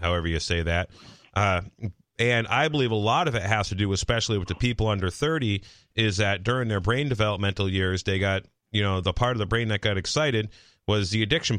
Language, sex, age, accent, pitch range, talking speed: English, male, 30-49, American, 90-110 Hz, 225 wpm